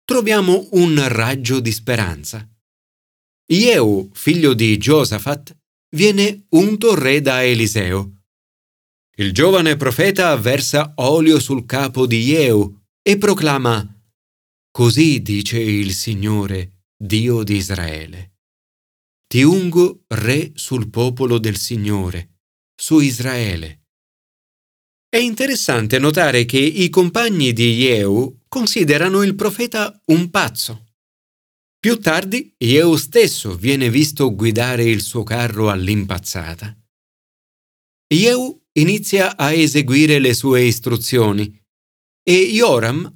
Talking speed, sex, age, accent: 105 wpm, male, 40-59, native